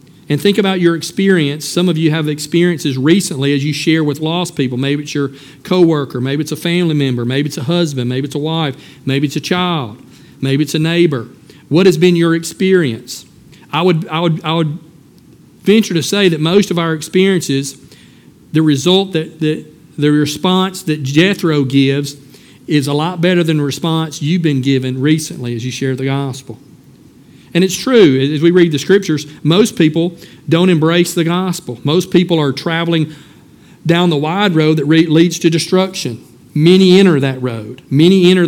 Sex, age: male, 50-69